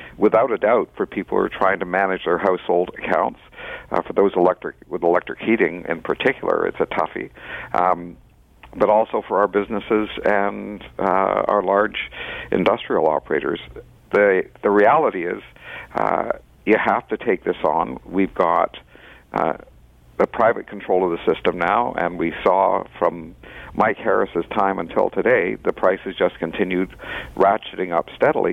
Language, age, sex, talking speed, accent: English, 60-79, male, 155 wpm, American